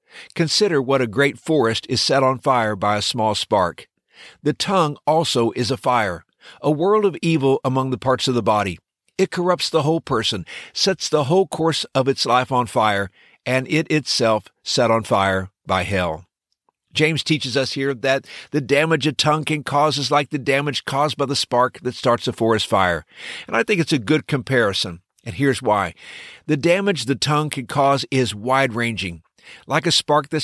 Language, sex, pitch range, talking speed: English, male, 115-155 Hz, 190 wpm